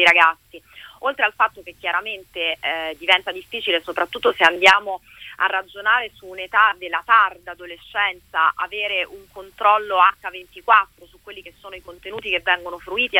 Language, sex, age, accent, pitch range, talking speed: Italian, female, 30-49, native, 185-235 Hz, 145 wpm